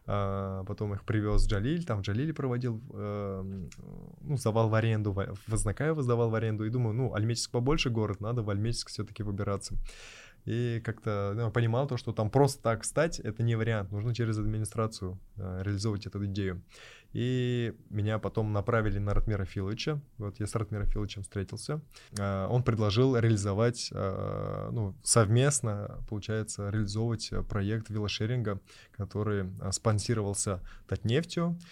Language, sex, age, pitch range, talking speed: Russian, male, 20-39, 100-120 Hz, 140 wpm